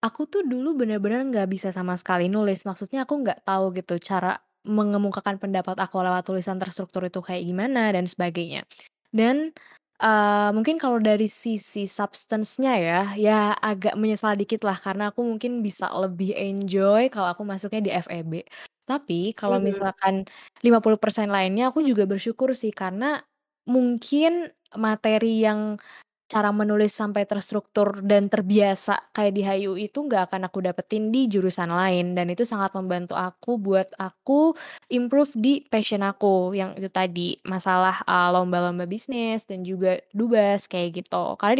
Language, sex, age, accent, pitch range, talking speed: Indonesian, female, 10-29, native, 185-220 Hz, 150 wpm